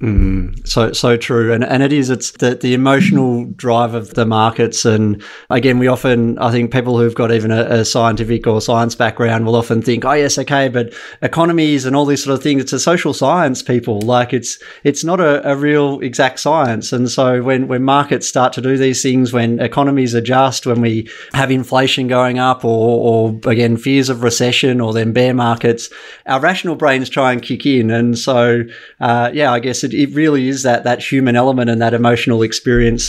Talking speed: 205 wpm